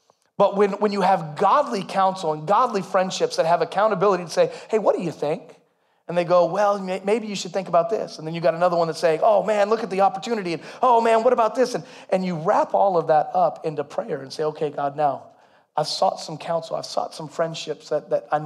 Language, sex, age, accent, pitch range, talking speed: English, male, 30-49, American, 160-195 Hz, 250 wpm